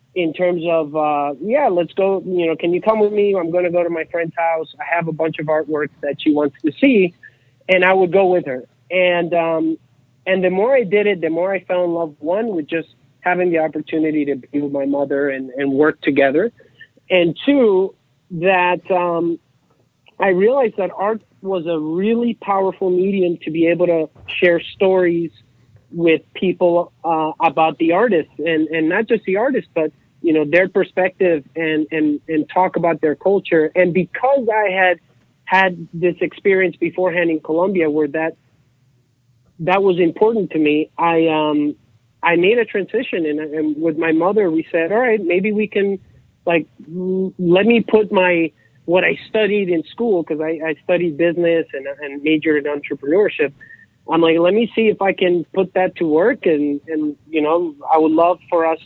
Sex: male